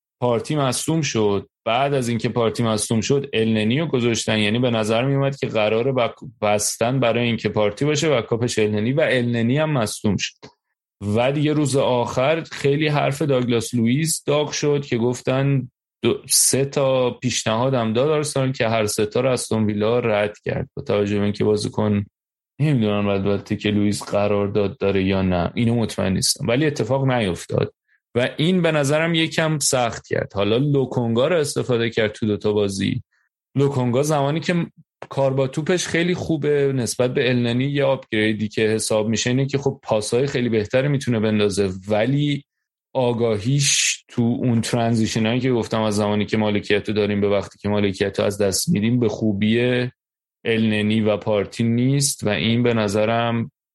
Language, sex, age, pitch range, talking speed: Persian, male, 30-49, 105-135 Hz, 165 wpm